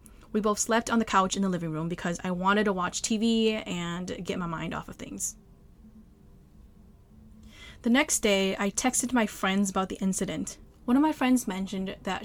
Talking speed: 190 wpm